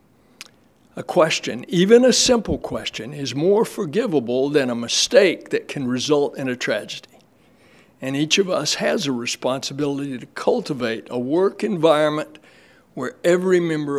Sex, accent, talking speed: male, American, 140 wpm